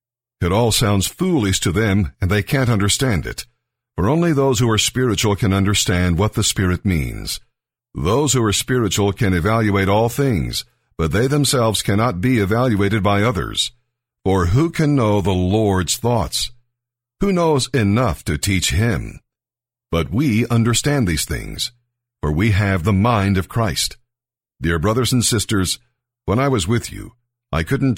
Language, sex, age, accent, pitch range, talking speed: English, male, 50-69, American, 95-125 Hz, 160 wpm